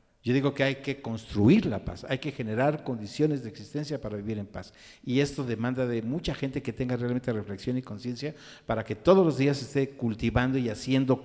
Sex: male